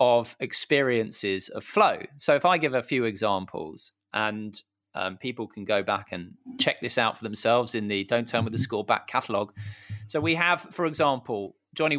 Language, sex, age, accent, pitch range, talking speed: English, male, 20-39, British, 105-130 Hz, 190 wpm